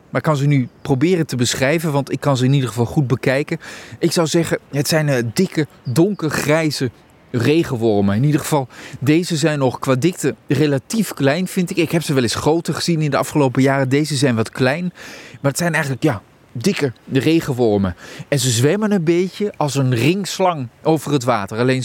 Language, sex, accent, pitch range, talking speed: Dutch, male, Dutch, 125-160 Hz, 195 wpm